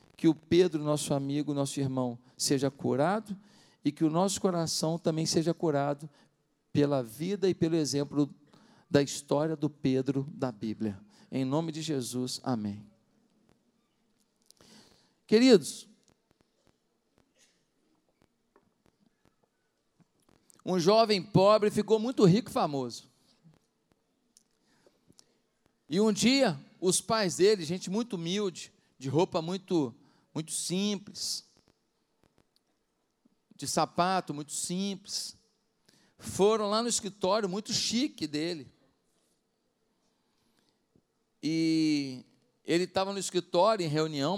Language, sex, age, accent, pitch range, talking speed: Portuguese, male, 50-69, Brazilian, 145-200 Hz, 100 wpm